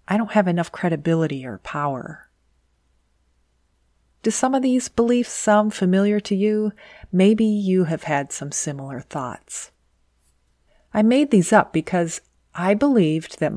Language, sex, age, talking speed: English, female, 40-59, 135 wpm